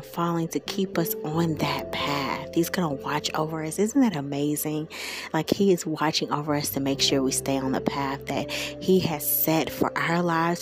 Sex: female